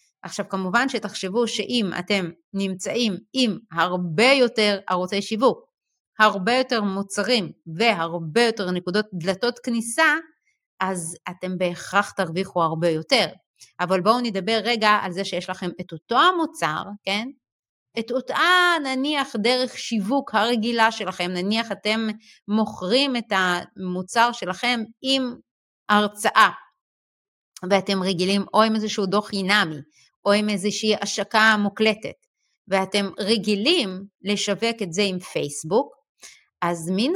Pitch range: 185-235 Hz